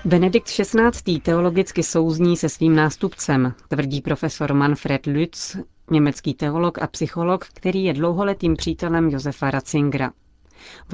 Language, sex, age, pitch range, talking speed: Czech, female, 40-59, 140-170 Hz, 120 wpm